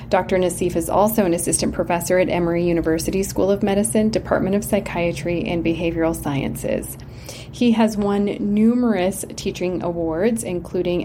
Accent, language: American, English